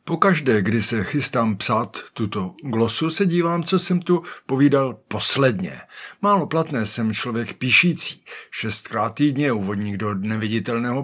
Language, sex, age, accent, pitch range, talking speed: Czech, male, 50-69, native, 110-165 Hz, 130 wpm